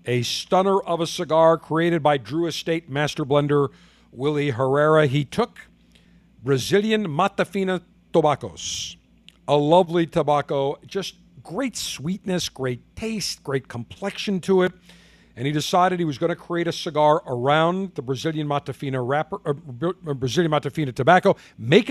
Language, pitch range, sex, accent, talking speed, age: English, 135-175 Hz, male, American, 135 wpm, 50-69